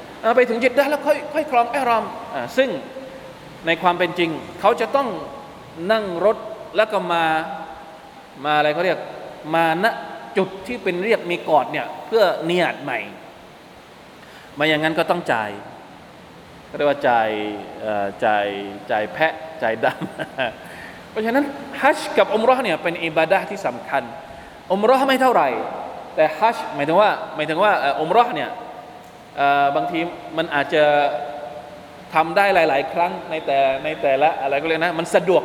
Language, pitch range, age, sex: Thai, 155-205 Hz, 20-39, male